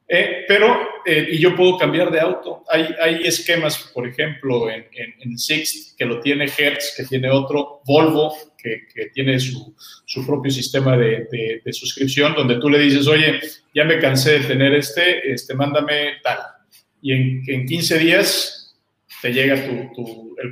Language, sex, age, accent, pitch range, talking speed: Spanish, male, 40-59, Mexican, 130-155 Hz, 180 wpm